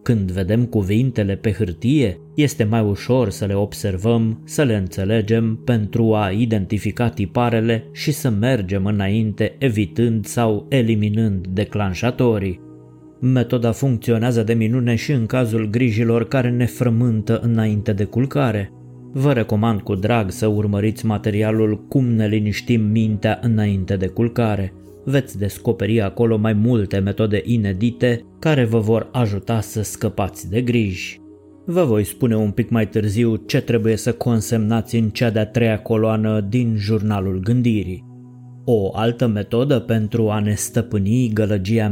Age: 20-39